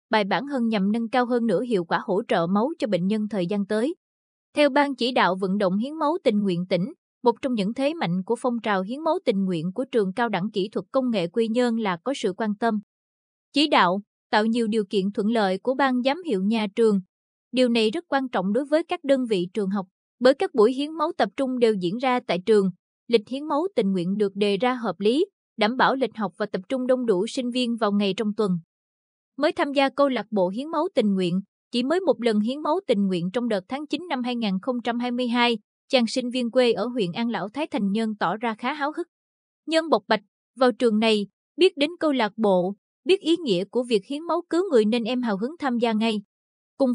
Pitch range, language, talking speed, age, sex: 205-265 Hz, Vietnamese, 240 wpm, 20-39, female